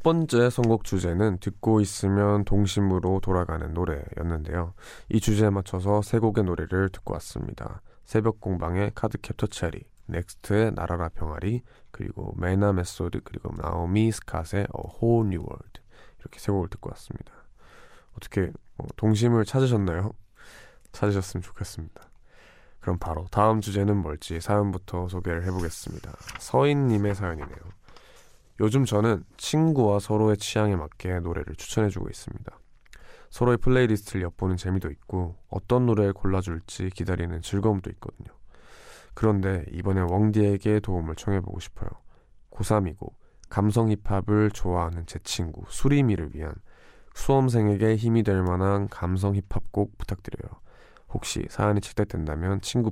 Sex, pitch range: male, 90-110 Hz